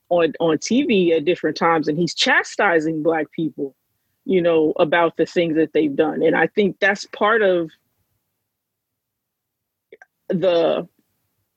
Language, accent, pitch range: English, American, 165-205 Hz